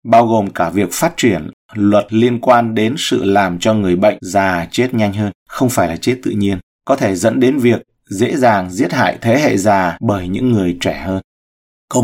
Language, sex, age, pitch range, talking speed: Vietnamese, male, 20-39, 100-125 Hz, 215 wpm